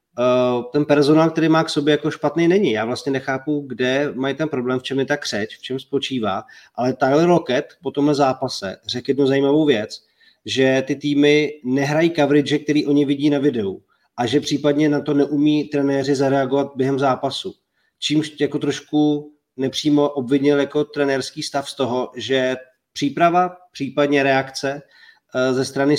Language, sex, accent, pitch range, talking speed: Czech, male, native, 130-145 Hz, 165 wpm